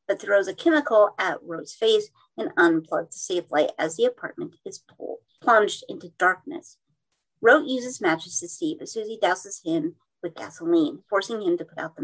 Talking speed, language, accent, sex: 180 wpm, English, American, female